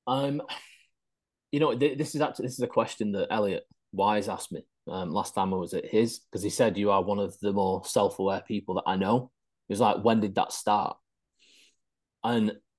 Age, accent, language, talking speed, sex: 30-49, British, English, 205 wpm, male